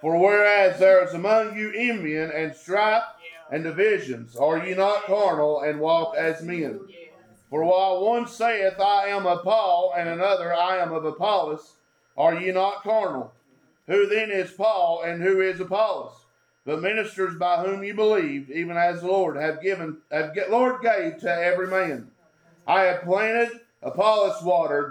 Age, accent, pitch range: 40-59, American, 165-205 Hz